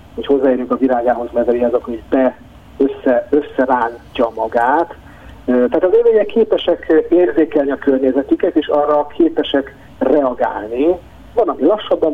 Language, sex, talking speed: Hungarian, male, 125 wpm